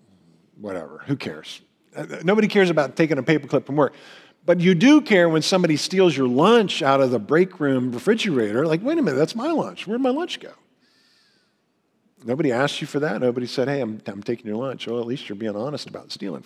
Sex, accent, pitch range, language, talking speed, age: male, American, 115-150 Hz, English, 210 wpm, 50-69